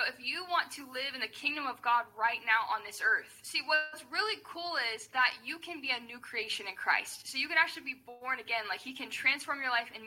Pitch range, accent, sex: 235-285 Hz, American, female